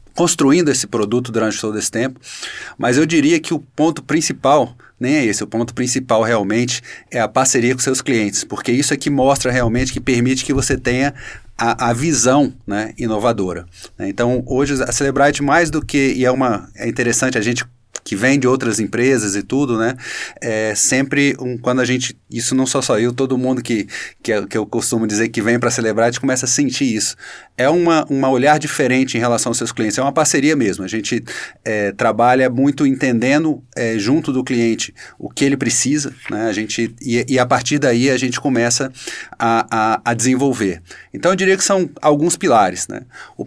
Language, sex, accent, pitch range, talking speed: Portuguese, male, Brazilian, 115-140 Hz, 200 wpm